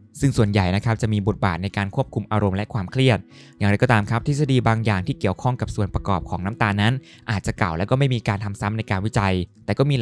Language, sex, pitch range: Thai, male, 100-125 Hz